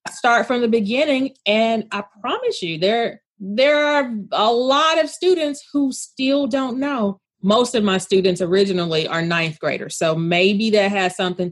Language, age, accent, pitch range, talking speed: English, 30-49, American, 190-255 Hz, 165 wpm